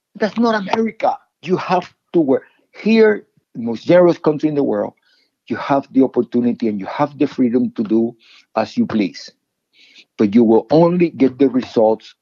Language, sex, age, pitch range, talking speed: English, male, 50-69, 110-155 Hz, 175 wpm